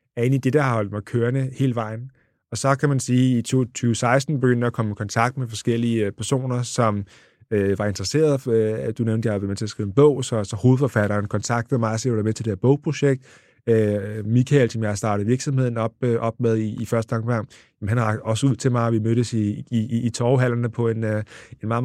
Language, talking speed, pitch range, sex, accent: Danish, 220 wpm, 110-130 Hz, male, native